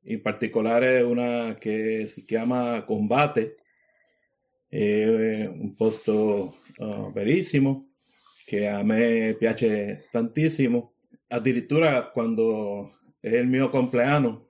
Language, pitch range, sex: Italian, 110-135 Hz, male